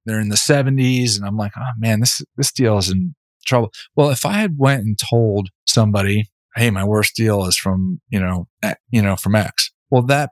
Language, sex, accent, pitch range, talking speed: English, male, American, 110-135 Hz, 215 wpm